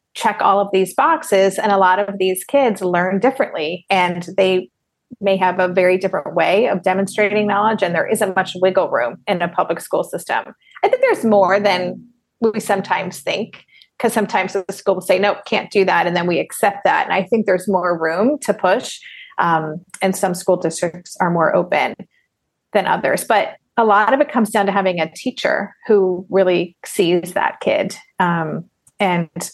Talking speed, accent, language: 190 wpm, American, English